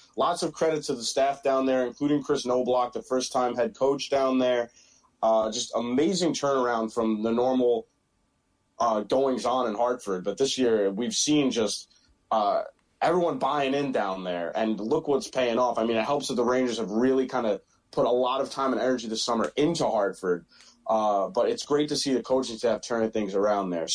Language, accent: English, American